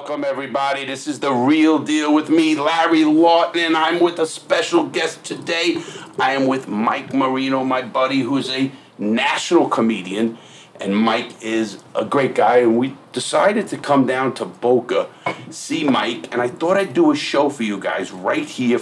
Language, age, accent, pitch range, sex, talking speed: English, 50-69, American, 115-150 Hz, male, 180 wpm